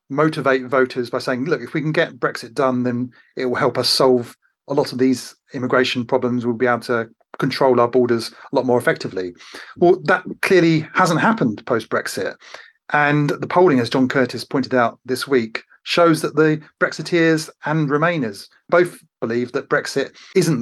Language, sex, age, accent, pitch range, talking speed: English, male, 30-49, British, 125-155 Hz, 180 wpm